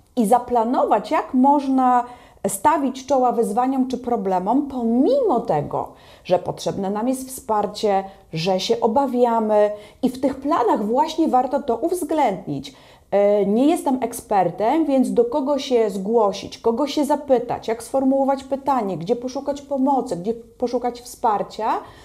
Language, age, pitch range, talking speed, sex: Polish, 30-49, 215-270 Hz, 130 wpm, female